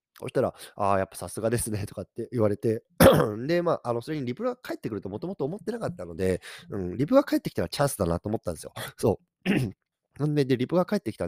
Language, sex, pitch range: Japanese, male, 95-150 Hz